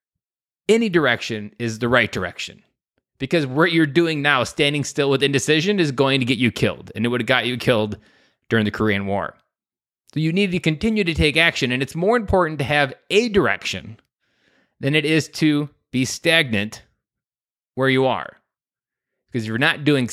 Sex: male